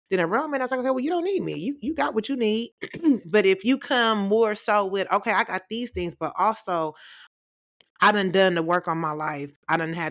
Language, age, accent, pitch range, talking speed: English, 30-49, American, 155-195 Hz, 260 wpm